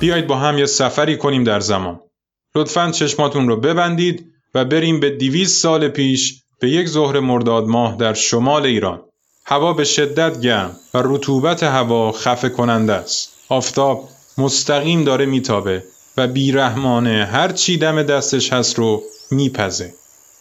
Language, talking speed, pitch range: Persian, 140 wpm, 120-155 Hz